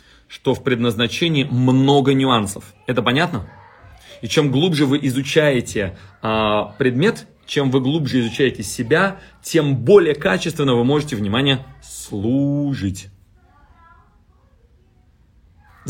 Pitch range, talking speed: 115-150 Hz, 100 wpm